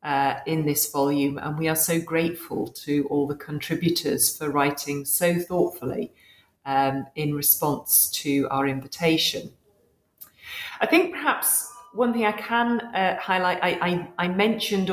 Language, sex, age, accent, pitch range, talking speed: English, female, 40-59, British, 150-190 Hz, 135 wpm